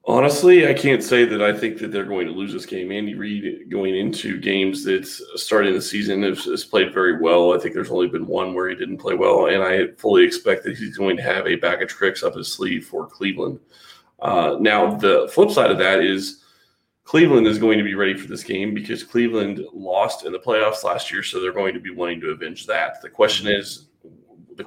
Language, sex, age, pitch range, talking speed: English, male, 30-49, 100-145 Hz, 230 wpm